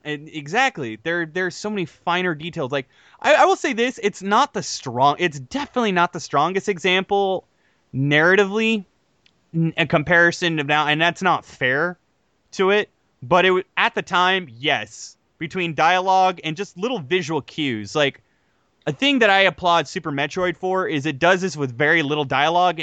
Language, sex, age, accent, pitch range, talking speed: English, male, 20-39, American, 150-200 Hz, 170 wpm